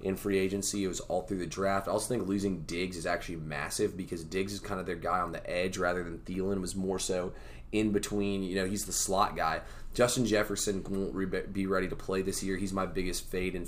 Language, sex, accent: English, male, American